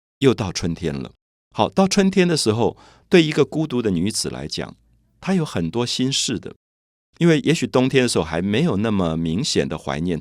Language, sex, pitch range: Chinese, male, 85-125 Hz